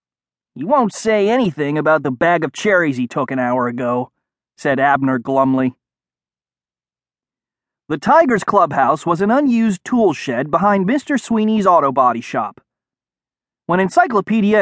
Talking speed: 135 wpm